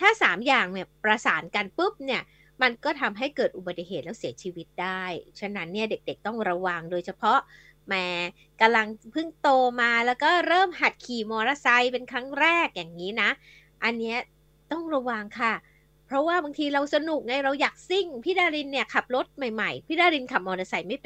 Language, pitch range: Thai, 195-275 Hz